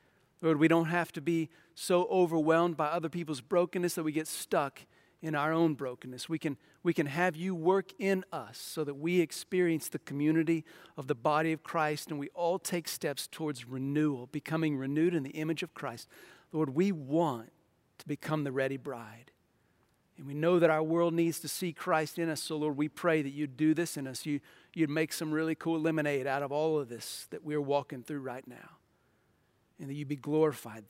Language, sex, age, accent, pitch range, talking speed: English, male, 40-59, American, 135-160 Hz, 205 wpm